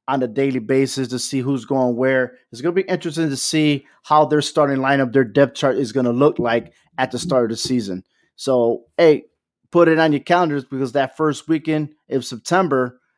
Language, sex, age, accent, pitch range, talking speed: English, male, 30-49, American, 125-145 Hz, 215 wpm